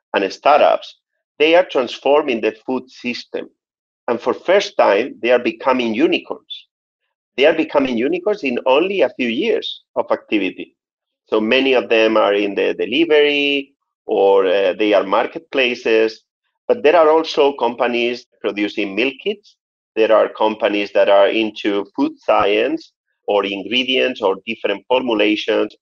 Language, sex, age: English, male, 40-59